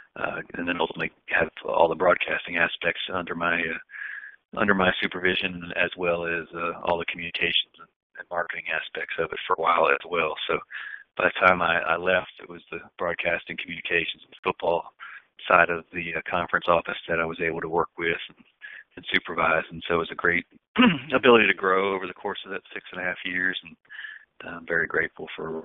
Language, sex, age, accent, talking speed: English, male, 40-59, American, 205 wpm